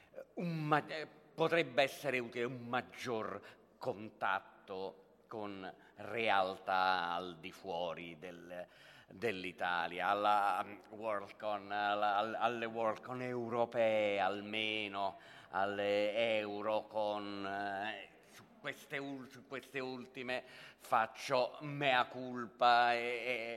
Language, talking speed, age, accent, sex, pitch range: Italian, 100 wpm, 40-59, native, male, 105-135 Hz